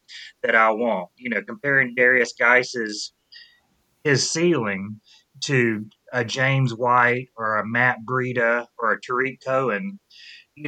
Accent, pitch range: American, 110-140 Hz